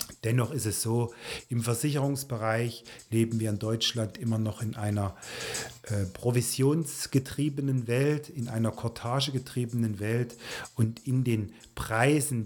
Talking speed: 120 wpm